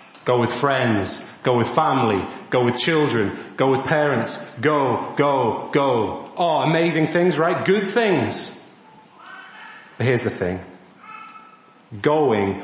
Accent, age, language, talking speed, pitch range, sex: British, 30-49, English, 125 wpm, 115-165 Hz, male